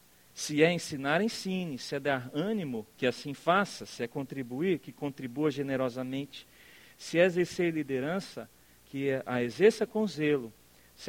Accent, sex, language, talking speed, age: Brazilian, male, English, 145 wpm, 40-59